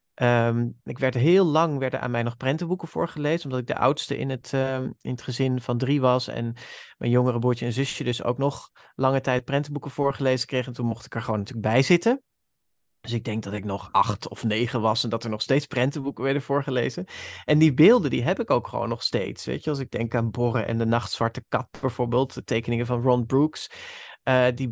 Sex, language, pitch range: male, Dutch, 120-150 Hz